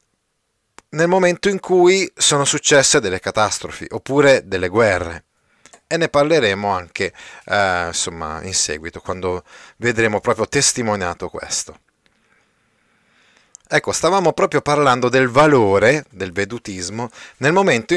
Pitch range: 100-145 Hz